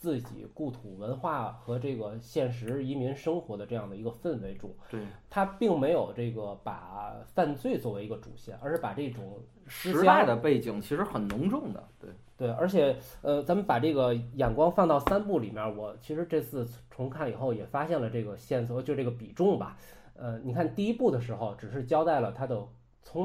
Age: 20-39